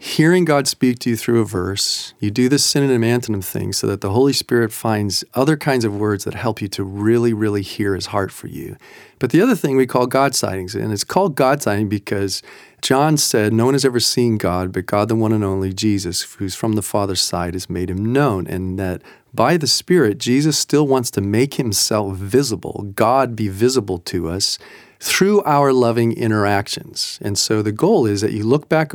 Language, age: English, 40-59